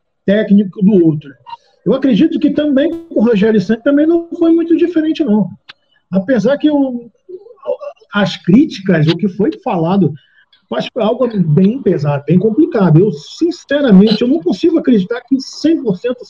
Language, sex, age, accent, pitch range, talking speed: Portuguese, male, 50-69, Brazilian, 180-240 Hz, 145 wpm